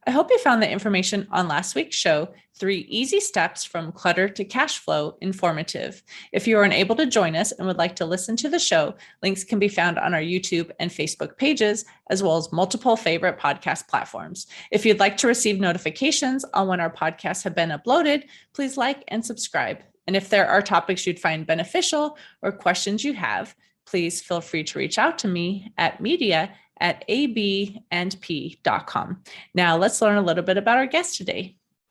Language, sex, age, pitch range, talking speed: English, female, 30-49, 180-245 Hz, 190 wpm